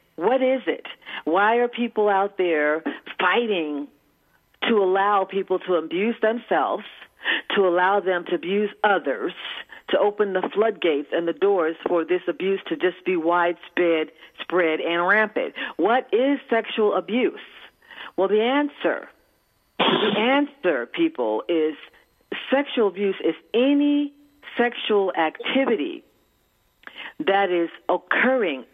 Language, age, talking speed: English, 50-69, 120 wpm